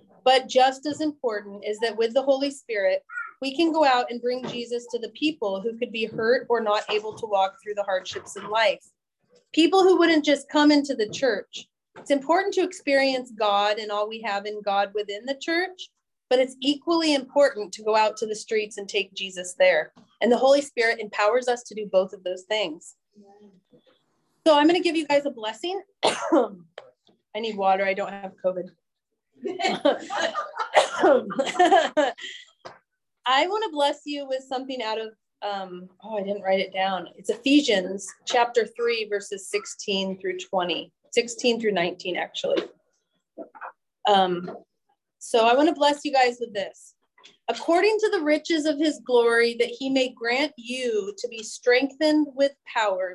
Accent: American